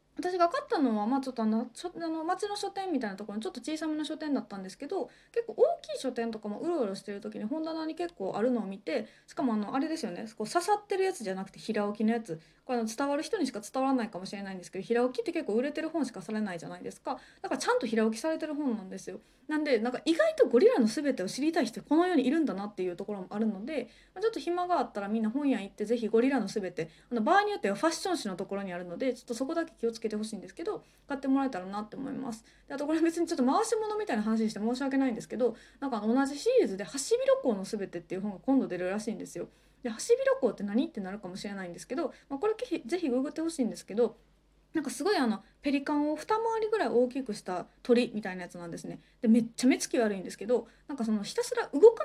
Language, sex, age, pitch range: Japanese, female, 20-39, 210-310 Hz